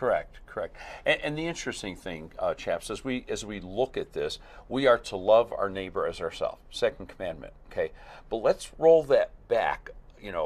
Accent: American